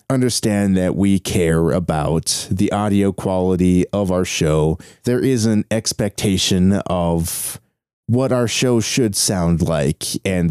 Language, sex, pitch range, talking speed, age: English, male, 85-110 Hz, 130 wpm, 30-49